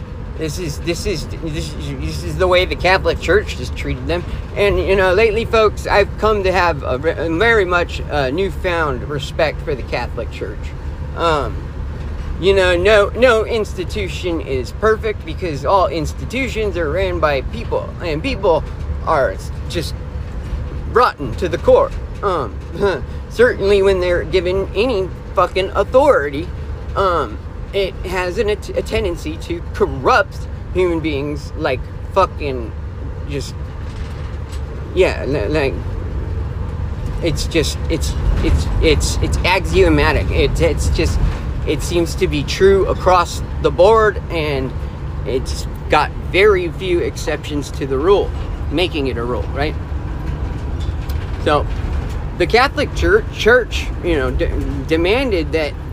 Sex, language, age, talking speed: male, English, 40-59, 130 wpm